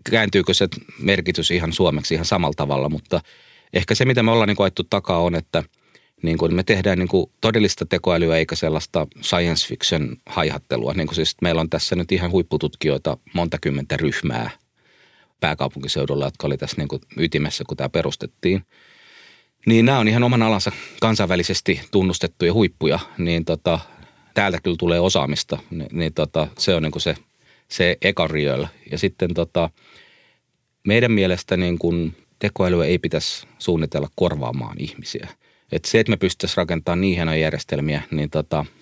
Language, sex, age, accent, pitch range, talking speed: Finnish, male, 30-49, native, 75-95 Hz, 130 wpm